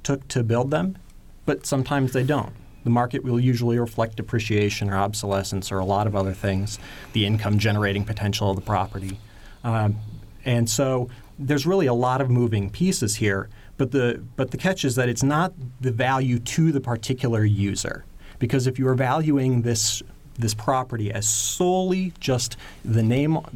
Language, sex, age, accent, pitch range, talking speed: English, male, 40-59, American, 105-130 Hz, 170 wpm